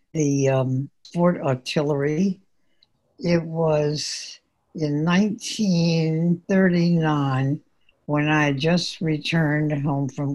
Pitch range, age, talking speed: 135-155 Hz, 60-79, 80 wpm